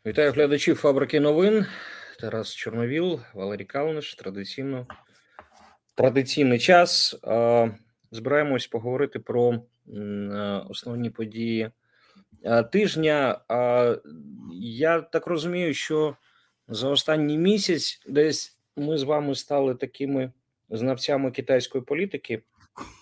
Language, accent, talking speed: Ukrainian, native, 85 wpm